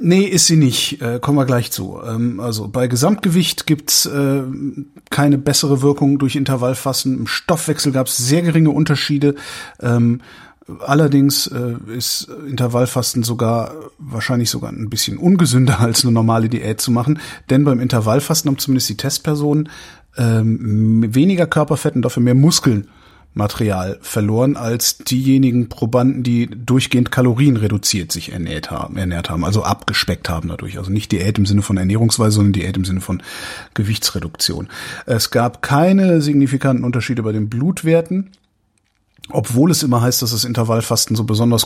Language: German